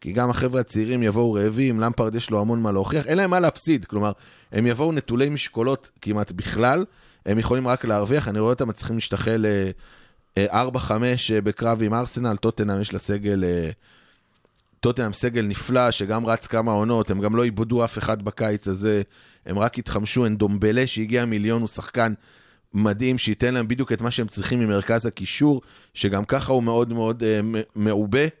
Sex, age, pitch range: male, 20-39, 100-120 Hz